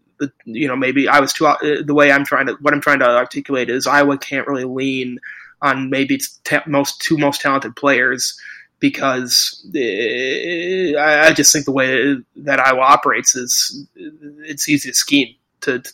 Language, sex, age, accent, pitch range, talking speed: English, male, 20-39, American, 135-150 Hz, 175 wpm